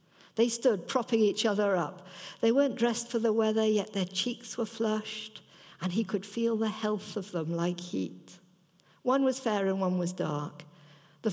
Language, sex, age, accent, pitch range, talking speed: English, female, 60-79, British, 175-200 Hz, 185 wpm